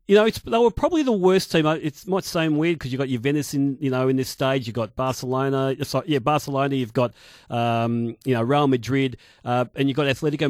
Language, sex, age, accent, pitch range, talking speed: English, male, 40-59, Australian, 130-160 Hz, 240 wpm